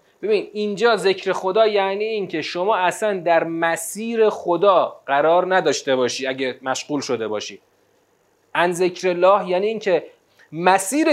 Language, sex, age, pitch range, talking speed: Persian, male, 30-49, 160-210 Hz, 130 wpm